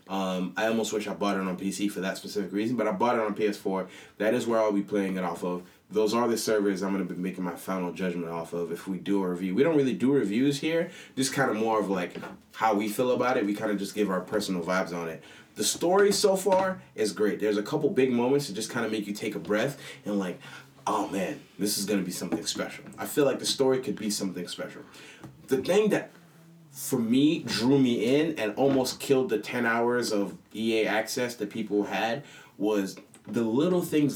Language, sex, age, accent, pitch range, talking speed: English, male, 30-49, American, 100-125 Hz, 240 wpm